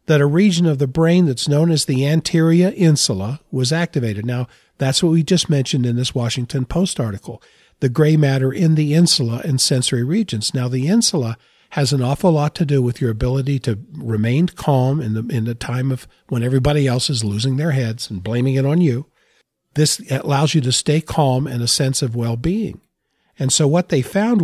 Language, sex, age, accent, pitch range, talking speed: English, male, 50-69, American, 125-155 Hz, 205 wpm